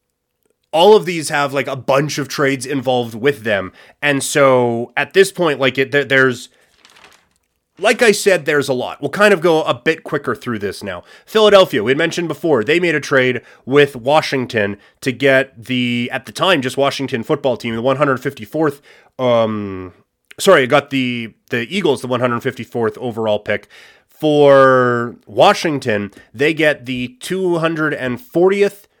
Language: English